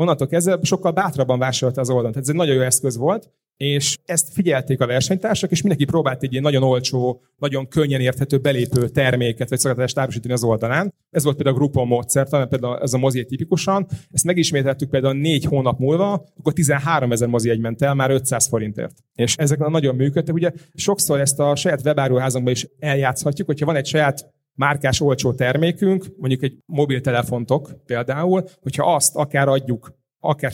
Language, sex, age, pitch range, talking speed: Hungarian, male, 30-49, 130-160 Hz, 175 wpm